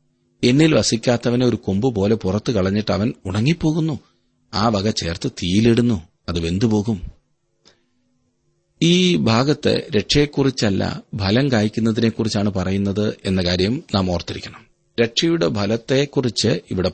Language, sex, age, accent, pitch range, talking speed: Malayalam, male, 40-59, native, 100-125 Hz, 95 wpm